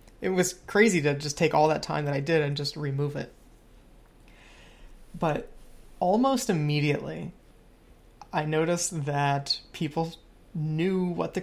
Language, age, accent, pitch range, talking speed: English, 20-39, American, 145-170 Hz, 135 wpm